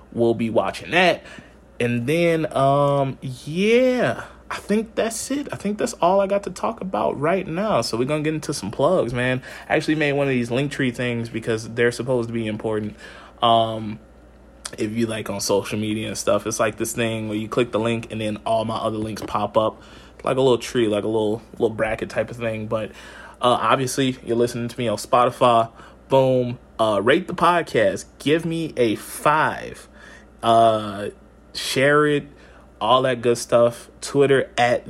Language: English